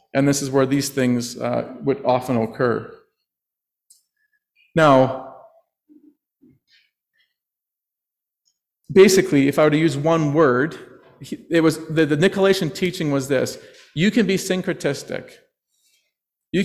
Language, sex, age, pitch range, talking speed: English, male, 40-59, 145-195 Hz, 110 wpm